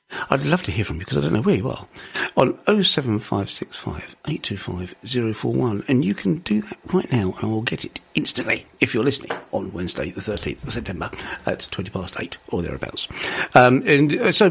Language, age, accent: English, 50-69, British